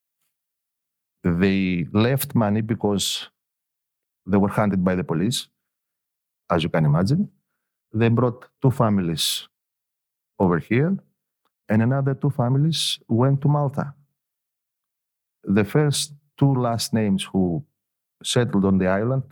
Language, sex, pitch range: English, male, 95-125 Hz